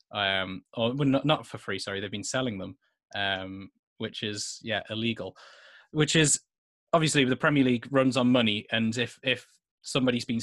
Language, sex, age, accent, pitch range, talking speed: English, male, 20-39, British, 105-125 Hz, 175 wpm